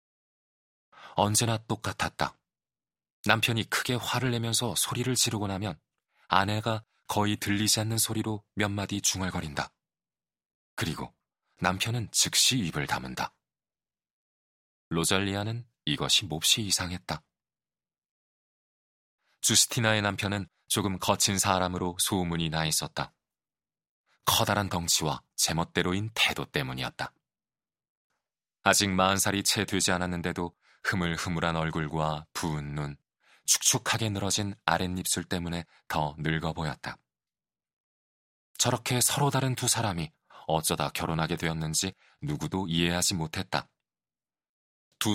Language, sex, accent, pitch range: Korean, male, native, 85-110 Hz